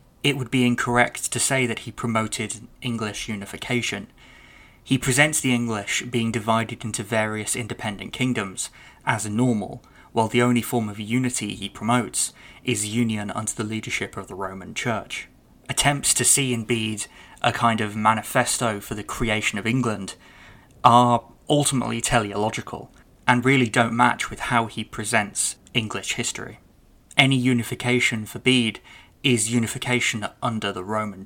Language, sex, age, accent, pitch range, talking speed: English, male, 20-39, British, 110-125 Hz, 150 wpm